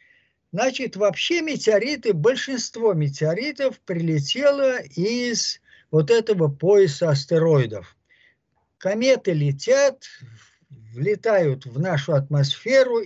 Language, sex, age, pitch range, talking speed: Russian, male, 50-69, 145-230 Hz, 80 wpm